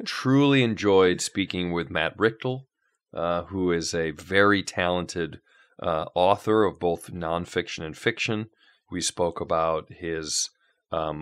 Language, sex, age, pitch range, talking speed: English, male, 40-59, 85-110 Hz, 130 wpm